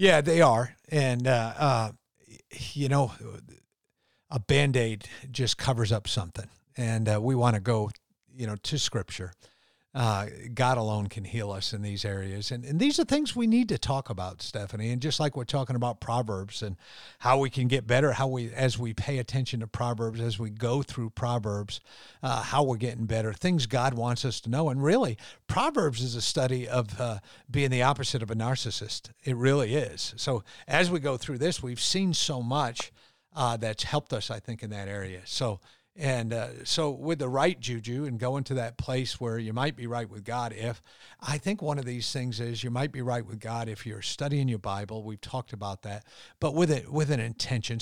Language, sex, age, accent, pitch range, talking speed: English, male, 50-69, American, 115-140 Hz, 210 wpm